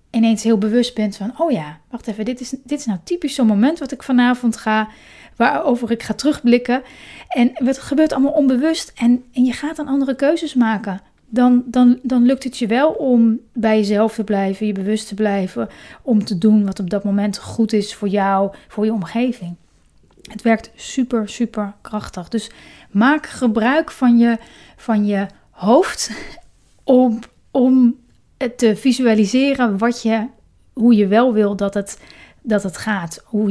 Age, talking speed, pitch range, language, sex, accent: 30-49, 170 wpm, 210-255 Hz, Dutch, female, Dutch